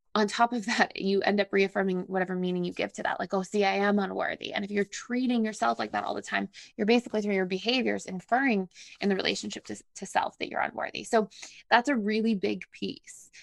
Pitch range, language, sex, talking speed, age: 195-220 Hz, English, female, 230 wpm, 20-39